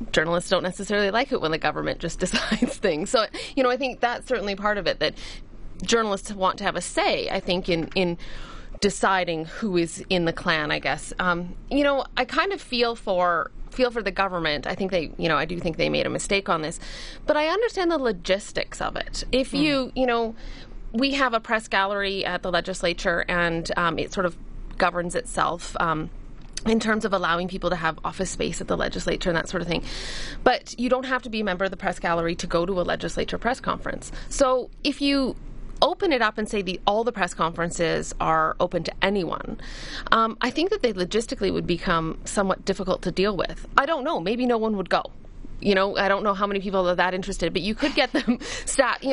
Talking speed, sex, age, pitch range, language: 225 wpm, female, 30-49, 180-235 Hz, English